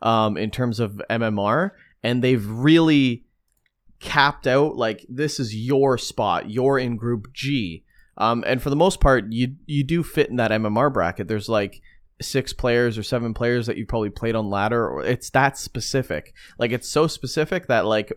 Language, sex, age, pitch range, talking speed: English, male, 30-49, 105-135 Hz, 185 wpm